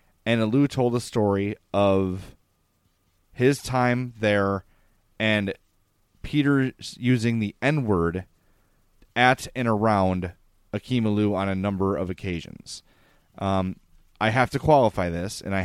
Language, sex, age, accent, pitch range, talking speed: English, male, 30-49, American, 95-125 Hz, 125 wpm